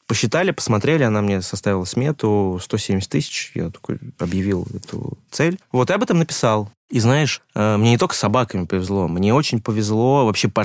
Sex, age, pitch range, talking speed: male, 20-39, 110-150 Hz, 170 wpm